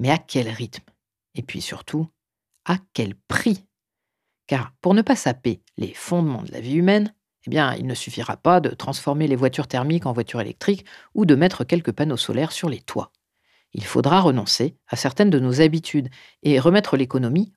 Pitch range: 120-170 Hz